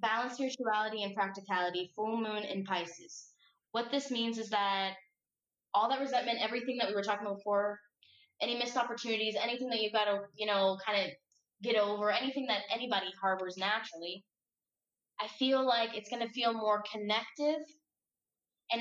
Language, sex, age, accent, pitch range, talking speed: English, female, 10-29, American, 200-235 Hz, 165 wpm